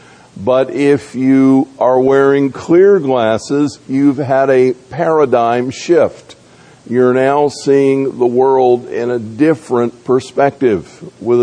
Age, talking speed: 50-69, 115 wpm